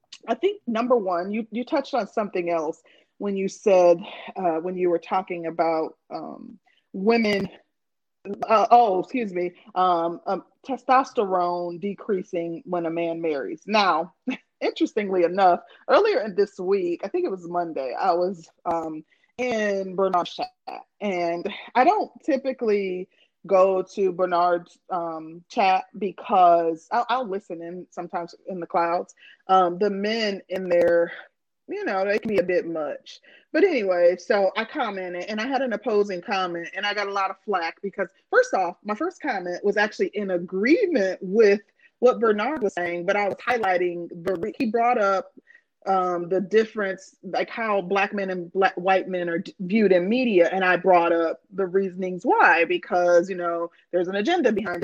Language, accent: English, American